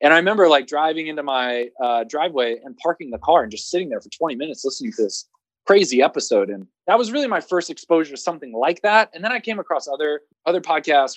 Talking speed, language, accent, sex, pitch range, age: 235 wpm, English, American, male, 125-175 Hz, 20-39